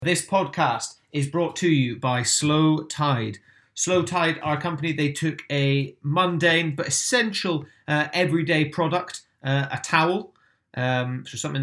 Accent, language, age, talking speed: British, English, 30-49, 140 wpm